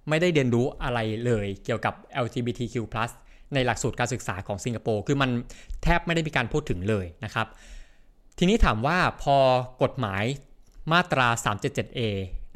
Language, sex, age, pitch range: Thai, male, 20-39, 110-135 Hz